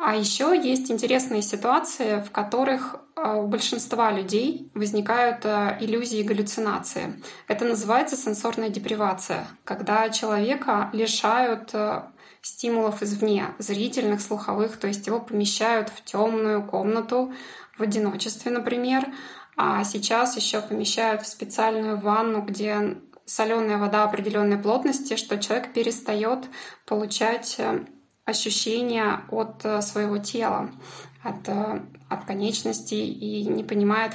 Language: Russian